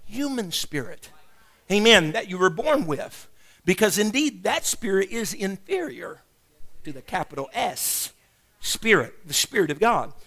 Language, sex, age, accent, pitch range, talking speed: English, male, 50-69, American, 155-215 Hz, 135 wpm